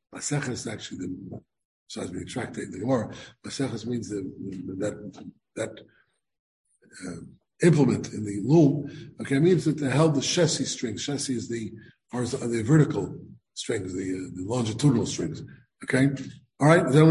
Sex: male